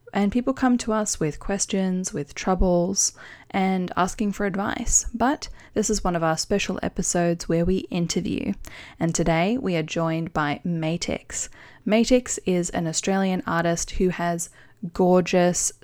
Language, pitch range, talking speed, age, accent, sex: English, 165-205 Hz, 150 wpm, 20-39, Australian, female